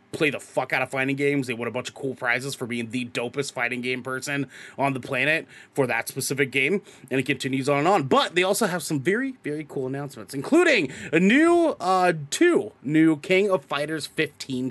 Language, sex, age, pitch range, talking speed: English, male, 30-49, 125-160 Hz, 215 wpm